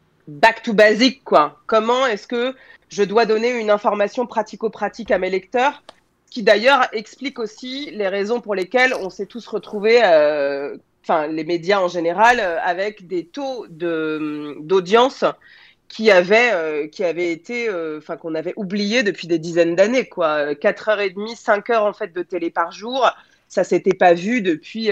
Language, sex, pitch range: French, female, 175-235 Hz